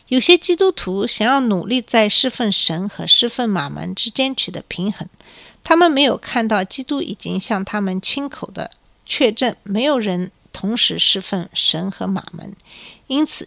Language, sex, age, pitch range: Chinese, female, 50-69, 185-235 Hz